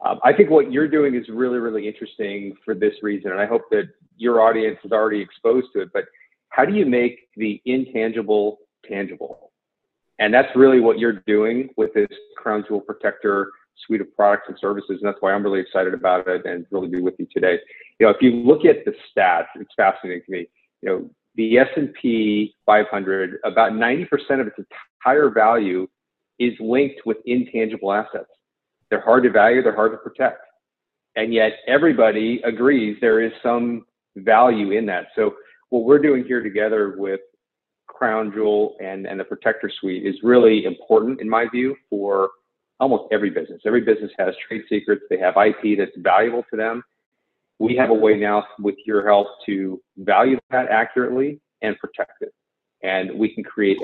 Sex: male